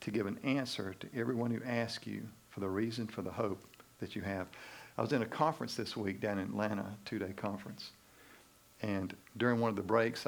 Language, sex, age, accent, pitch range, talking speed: English, male, 50-69, American, 100-115 Hz, 215 wpm